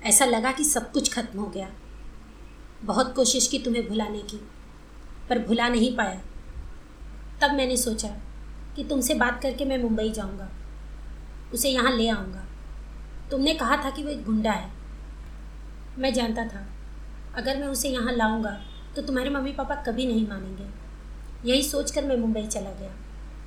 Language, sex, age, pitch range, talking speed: Hindi, female, 20-39, 215-265 Hz, 160 wpm